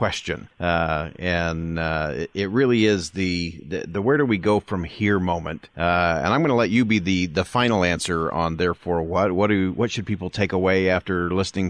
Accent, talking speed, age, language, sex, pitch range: American, 210 wpm, 40-59, English, male, 90-110 Hz